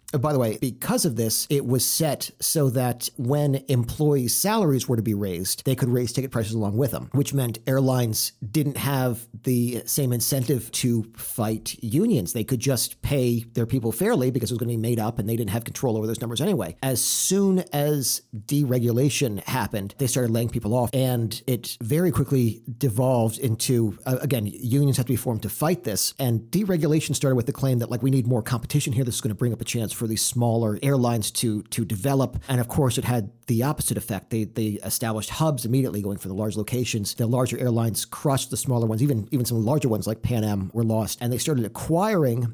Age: 40-59